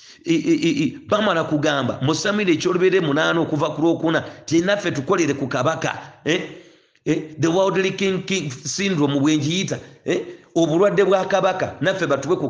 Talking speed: 150 wpm